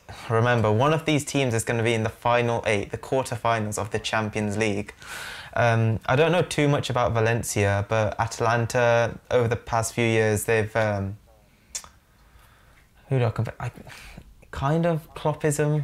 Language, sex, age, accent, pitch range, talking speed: English, male, 20-39, British, 105-115 Hz, 165 wpm